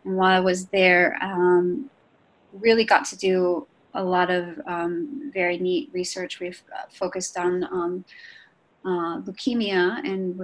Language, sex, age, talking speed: English, female, 30-49, 145 wpm